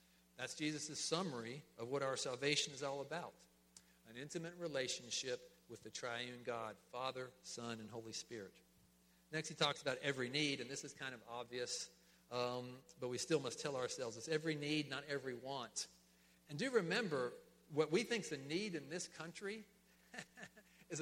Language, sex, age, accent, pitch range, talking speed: English, male, 50-69, American, 115-150 Hz, 170 wpm